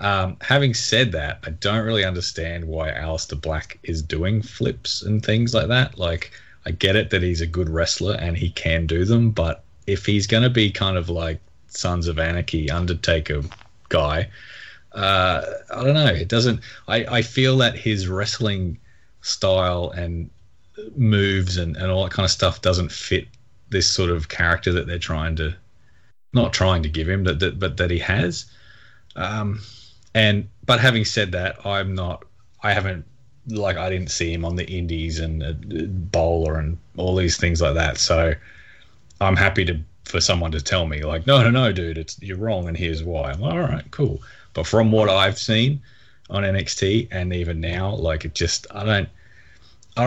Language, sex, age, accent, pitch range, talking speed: English, male, 20-39, Australian, 85-105 Hz, 190 wpm